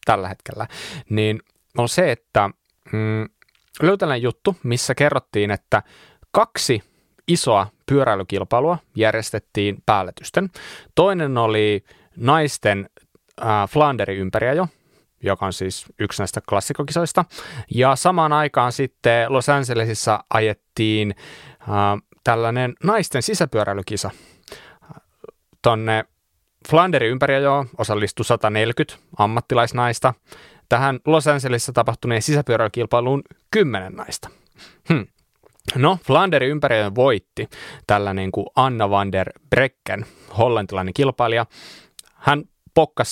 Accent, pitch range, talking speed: native, 105-140 Hz, 90 wpm